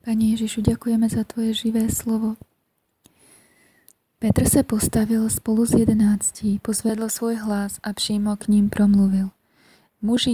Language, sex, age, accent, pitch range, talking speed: Czech, female, 20-39, native, 195-225 Hz, 130 wpm